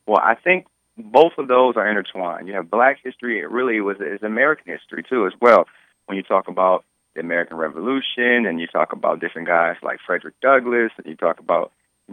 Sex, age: male, 30-49